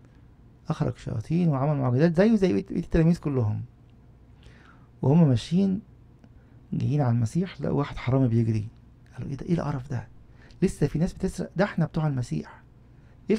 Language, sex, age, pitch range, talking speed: English, male, 50-69, 120-150 Hz, 150 wpm